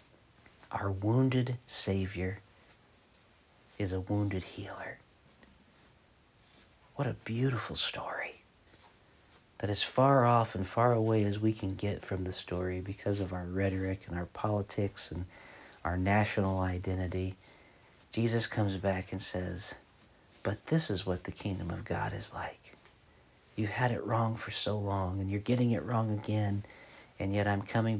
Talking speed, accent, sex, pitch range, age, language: 145 wpm, American, male, 95-110 Hz, 50-69, English